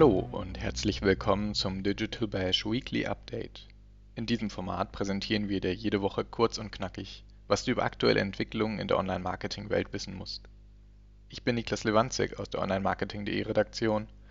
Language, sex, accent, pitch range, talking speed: German, male, German, 100-110 Hz, 155 wpm